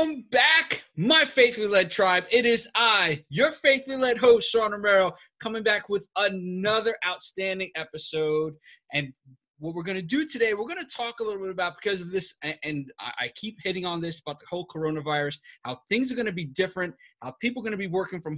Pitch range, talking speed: 155-220 Hz, 210 wpm